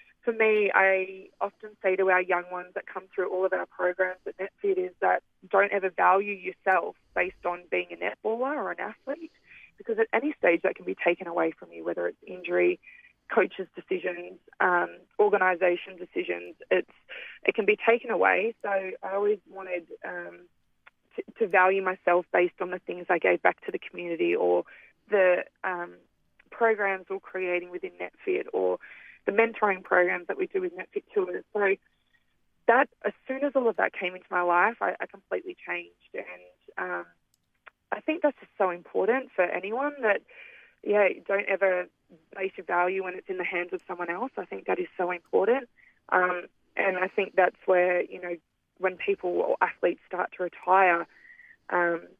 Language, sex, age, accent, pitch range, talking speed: English, female, 20-39, Australian, 180-230 Hz, 180 wpm